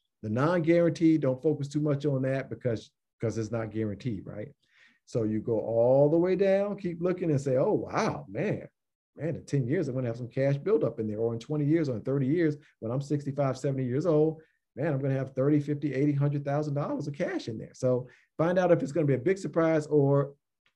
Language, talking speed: English, 215 wpm